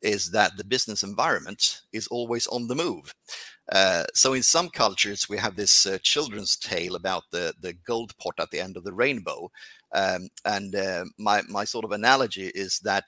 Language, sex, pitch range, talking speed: English, male, 100-130 Hz, 195 wpm